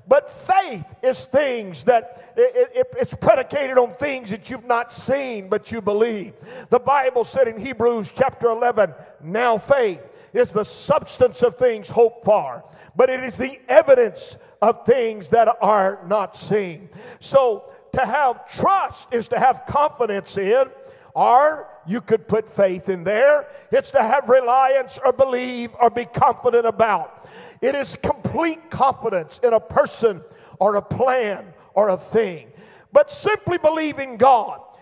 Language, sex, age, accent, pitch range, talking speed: English, male, 50-69, American, 230-315 Hz, 150 wpm